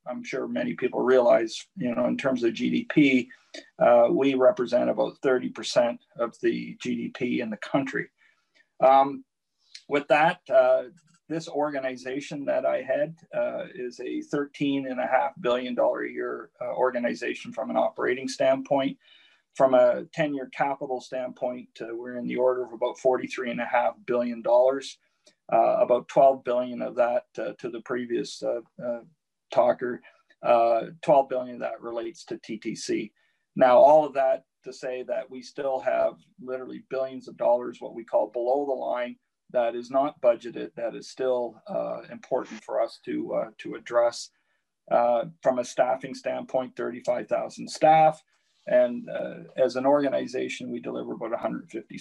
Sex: male